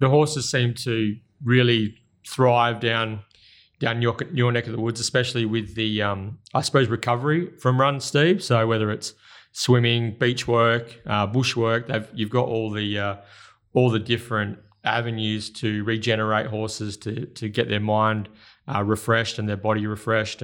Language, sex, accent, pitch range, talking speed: English, male, Australian, 105-120 Hz, 165 wpm